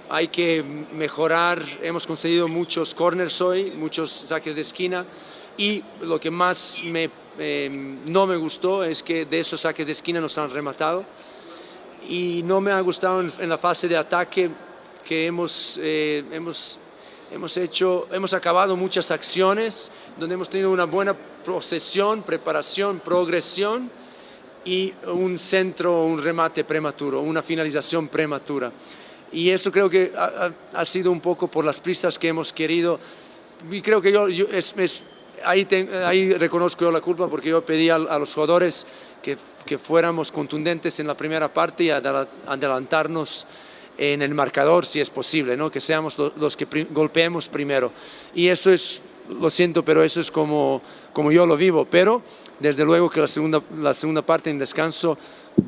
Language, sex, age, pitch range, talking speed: Spanish, male, 40-59, 155-180 Hz, 165 wpm